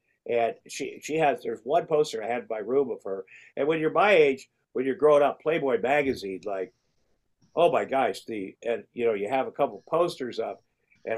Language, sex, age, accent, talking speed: English, male, 50-69, American, 220 wpm